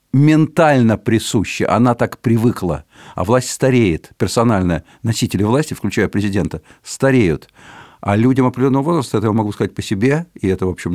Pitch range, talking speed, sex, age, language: 100-130 Hz, 155 wpm, male, 50-69, Russian